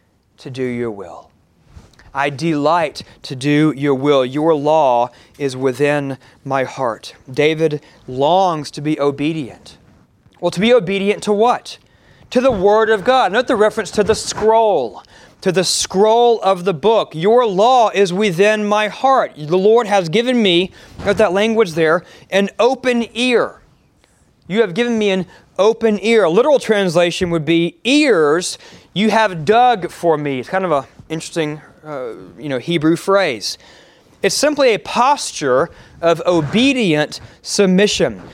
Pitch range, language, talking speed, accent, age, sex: 155-225 Hz, English, 150 wpm, American, 30-49, male